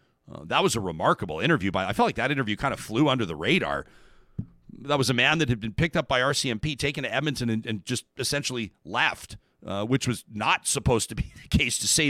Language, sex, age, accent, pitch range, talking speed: English, male, 40-59, American, 105-145 Hz, 240 wpm